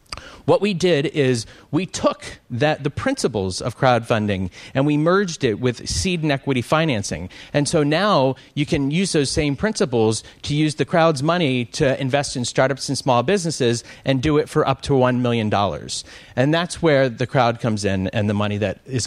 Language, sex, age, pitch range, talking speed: English, male, 30-49, 115-155 Hz, 190 wpm